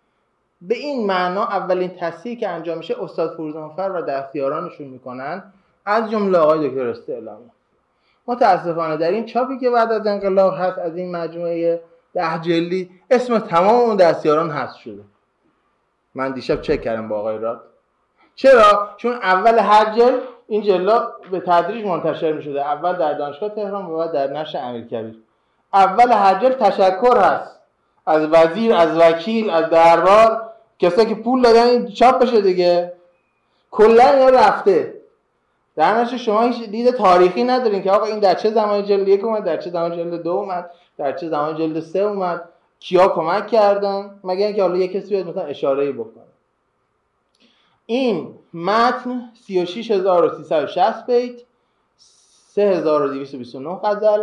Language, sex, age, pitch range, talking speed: Persian, male, 30-49, 160-225 Hz, 145 wpm